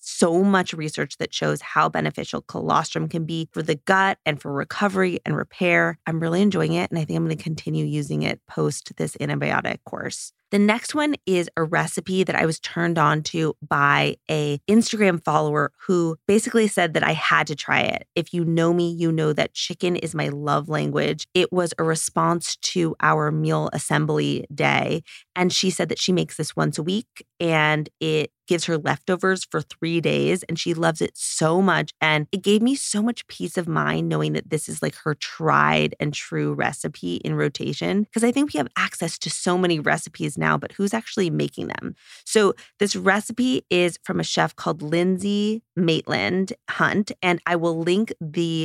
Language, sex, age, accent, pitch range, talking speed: English, female, 20-39, American, 155-185 Hz, 195 wpm